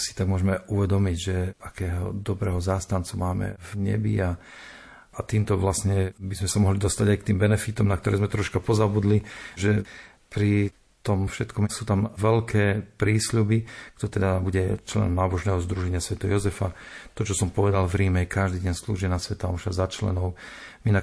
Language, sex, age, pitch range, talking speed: Slovak, male, 50-69, 95-105 Hz, 175 wpm